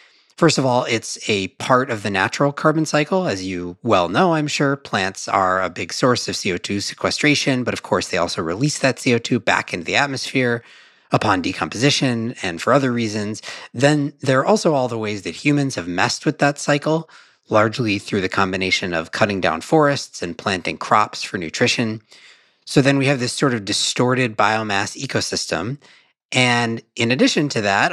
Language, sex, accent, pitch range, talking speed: English, male, American, 105-140 Hz, 185 wpm